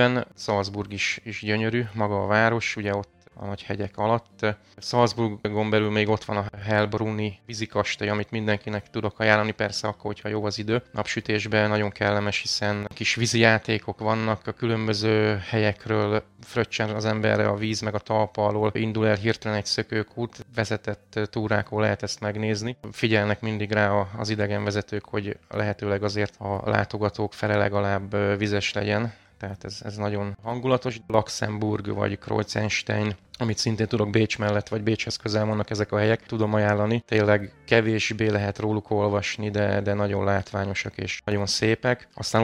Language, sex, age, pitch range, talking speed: Hungarian, male, 20-39, 105-110 Hz, 155 wpm